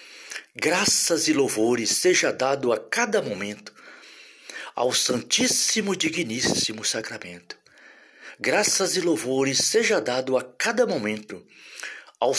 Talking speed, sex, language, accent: 100 wpm, male, English, Brazilian